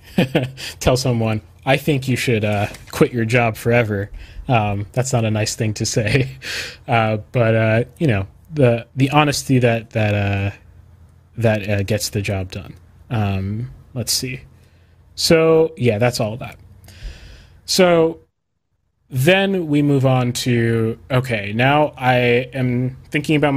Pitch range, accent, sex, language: 115-130 Hz, American, male, English